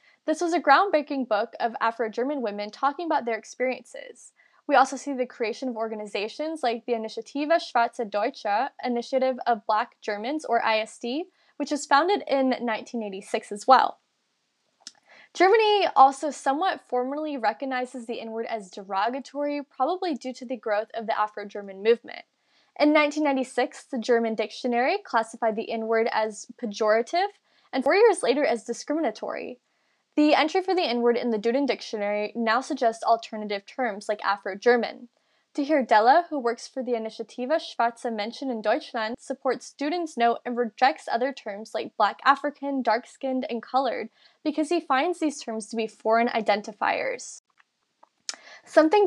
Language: English